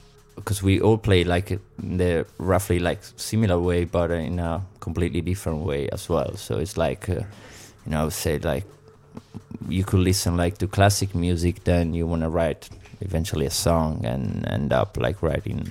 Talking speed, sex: 185 wpm, male